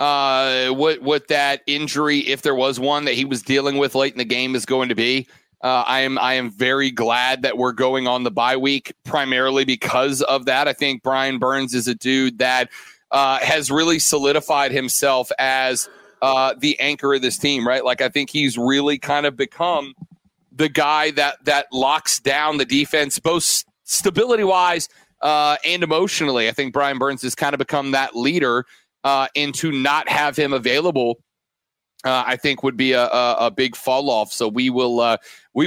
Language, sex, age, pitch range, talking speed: English, male, 30-49, 135-170 Hz, 195 wpm